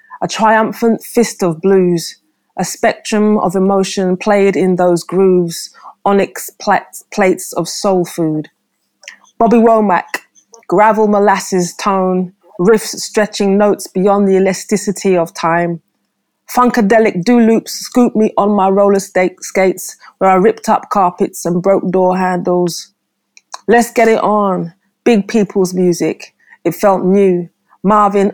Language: English